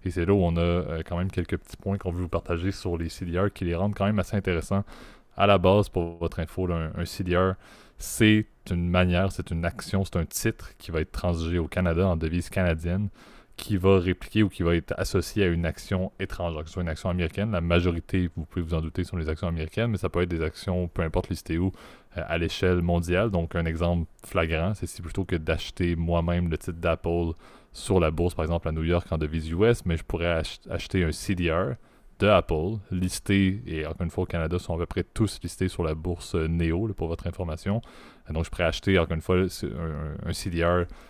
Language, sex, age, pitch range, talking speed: French, male, 20-39, 85-95 Hz, 230 wpm